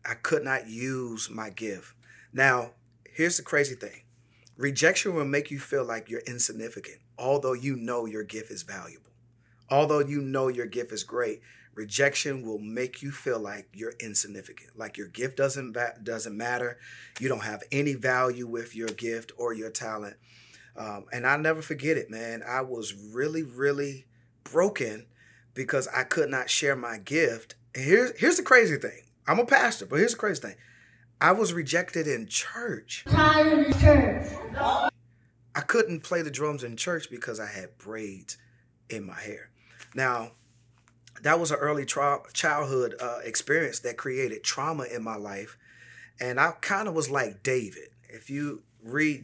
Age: 30-49